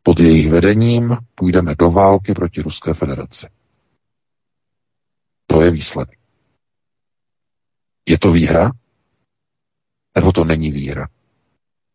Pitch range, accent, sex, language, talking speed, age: 80-100 Hz, native, male, Czech, 95 wpm, 50-69